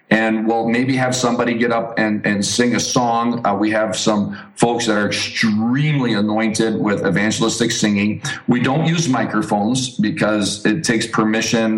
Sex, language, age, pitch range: male, English, 40-59, 110-130 Hz